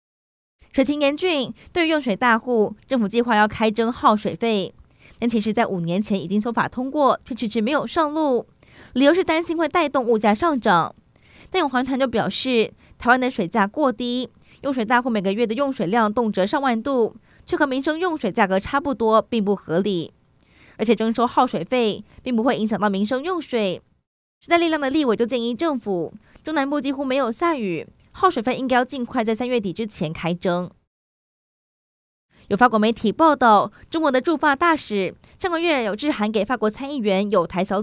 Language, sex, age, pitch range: Chinese, female, 20-39, 210-270 Hz